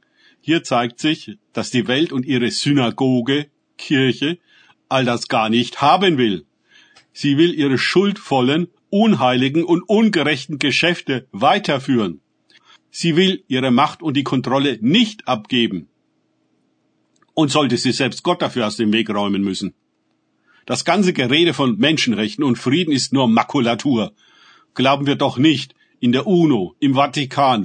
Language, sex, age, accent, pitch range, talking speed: German, male, 50-69, German, 120-155 Hz, 140 wpm